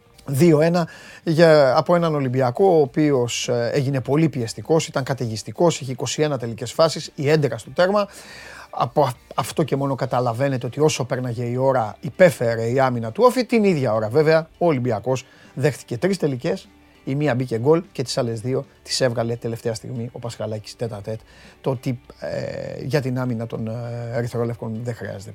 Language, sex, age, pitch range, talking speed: Greek, male, 30-49, 115-155 Hz, 170 wpm